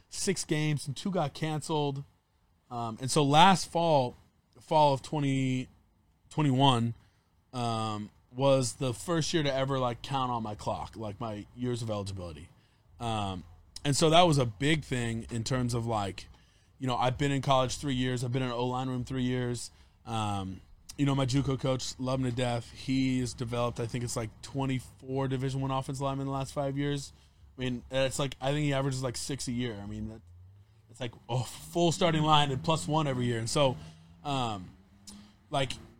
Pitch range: 110-140 Hz